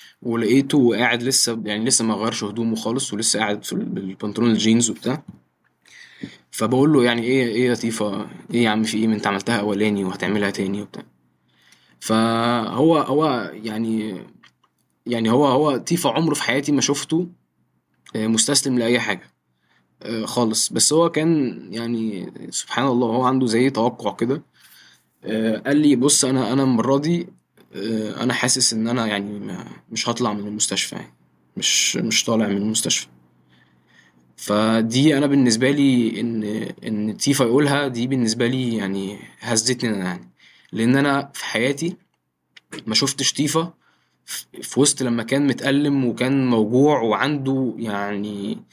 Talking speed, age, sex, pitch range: 135 wpm, 20-39, male, 110-135 Hz